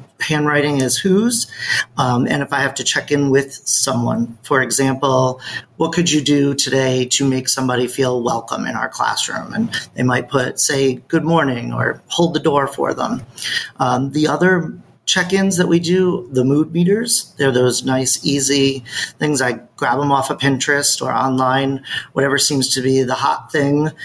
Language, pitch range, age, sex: English, 130-155 Hz, 40-59, male